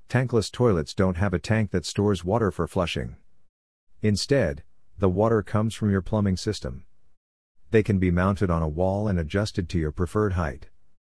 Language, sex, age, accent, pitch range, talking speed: English, male, 50-69, American, 85-105 Hz, 175 wpm